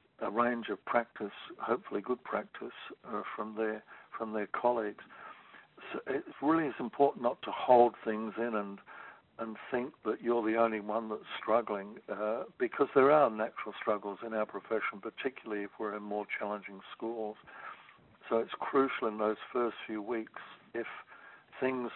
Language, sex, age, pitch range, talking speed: English, male, 60-79, 105-115 Hz, 160 wpm